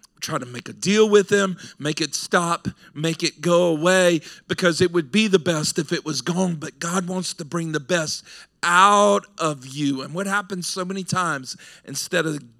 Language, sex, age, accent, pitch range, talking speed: English, male, 40-59, American, 160-205 Hz, 200 wpm